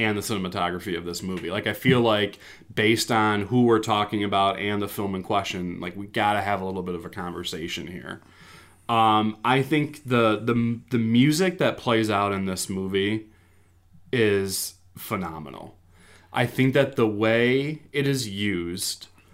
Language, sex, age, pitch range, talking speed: English, male, 30-49, 95-130 Hz, 170 wpm